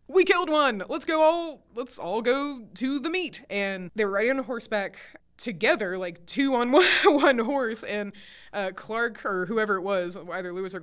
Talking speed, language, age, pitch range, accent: 200 wpm, English, 20-39, 175-225 Hz, American